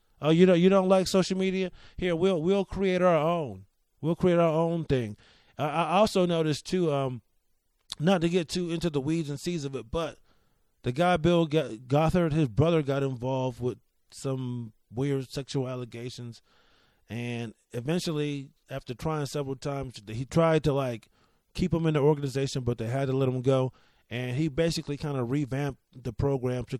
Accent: American